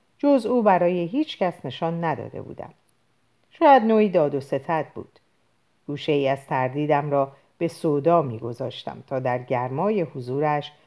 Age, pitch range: 40-59, 145-210 Hz